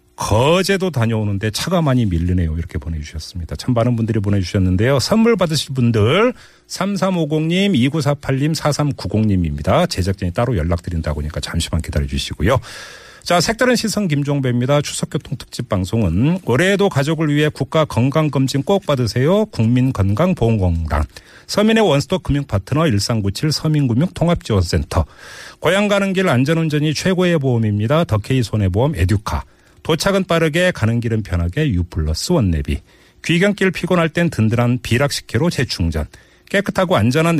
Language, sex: Korean, male